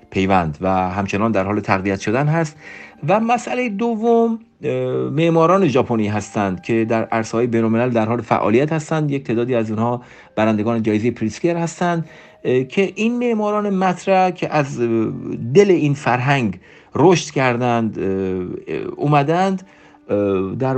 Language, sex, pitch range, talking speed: Persian, male, 115-165 Hz, 120 wpm